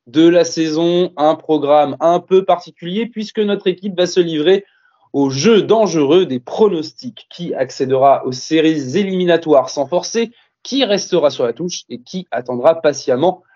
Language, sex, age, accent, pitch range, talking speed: French, male, 20-39, French, 140-200 Hz, 155 wpm